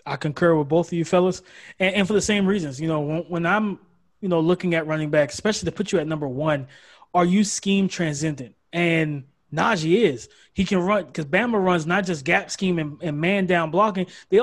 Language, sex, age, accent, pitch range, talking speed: English, male, 20-39, American, 165-205 Hz, 225 wpm